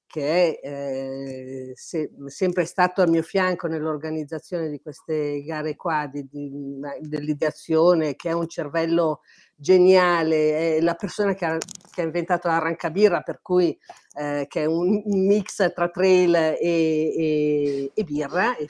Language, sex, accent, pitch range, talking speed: Italian, female, native, 150-190 Hz, 140 wpm